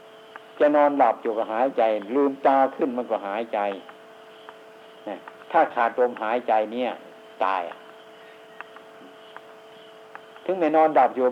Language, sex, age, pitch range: Thai, male, 60-79, 110-140 Hz